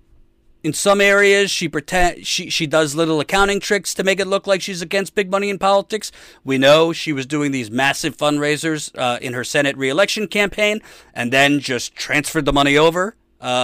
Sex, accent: male, American